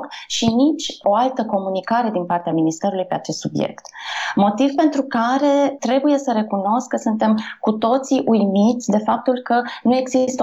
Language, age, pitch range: Romanian, 20-39, 185-245 Hz